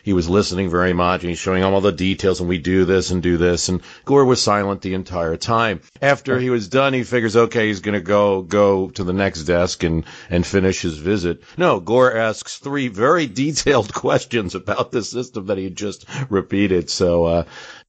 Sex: male